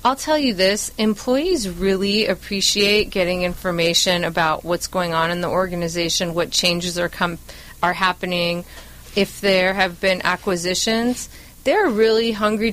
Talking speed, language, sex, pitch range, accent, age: 140 wpm, English, female, 185-230 Hz, American, 30-49